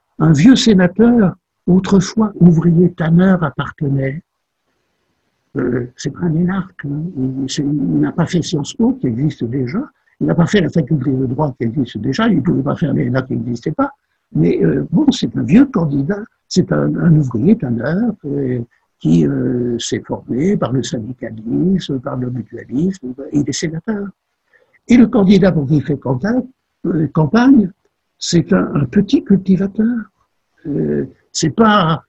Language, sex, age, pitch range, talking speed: French, male, 60-79, 145-195 Hz, 170 wpm